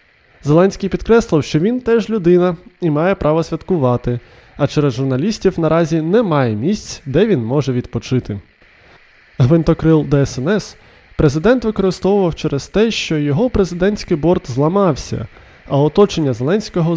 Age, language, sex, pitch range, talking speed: 20-39, Ukrainian, male, 135-190 Hz, 120 wpm